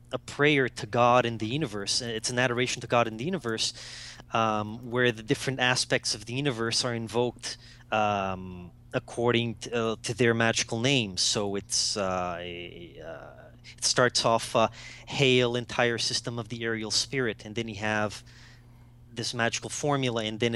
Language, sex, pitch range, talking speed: English, male, 110-125 Hz, 170 wpm